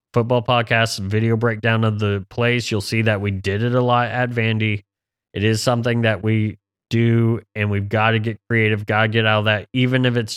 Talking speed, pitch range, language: 220 wpm, 105-120 Hz, English